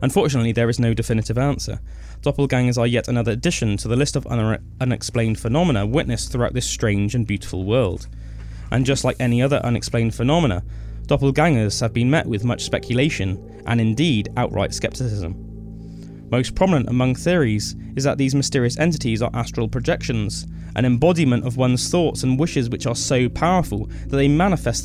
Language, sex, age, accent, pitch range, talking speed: English, male, 20-39, British, 110-135 Hz, 165 wpm